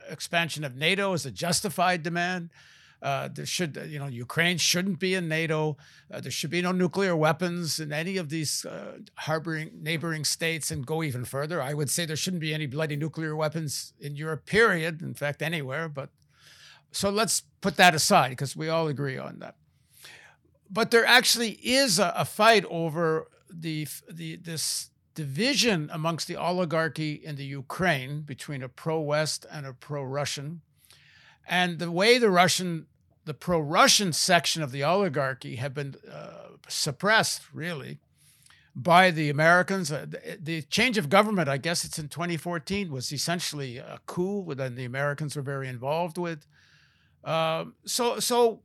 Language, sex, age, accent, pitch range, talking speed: English, male, 60-79, American, 145-180 Hz, 160 wpm